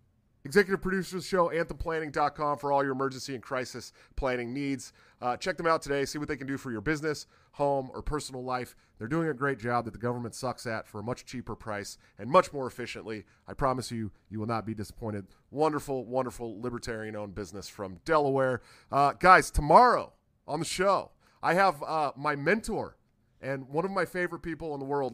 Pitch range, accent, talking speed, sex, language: 110-140 Hz, American, 200 wpm, male, English